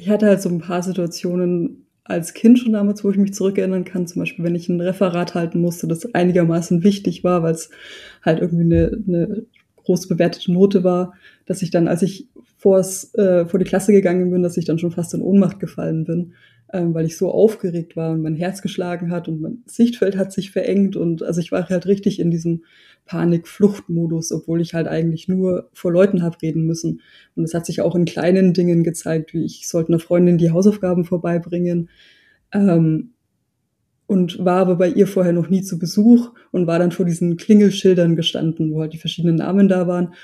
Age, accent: 20-39, German